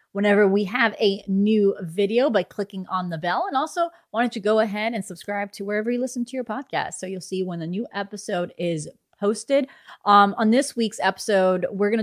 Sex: female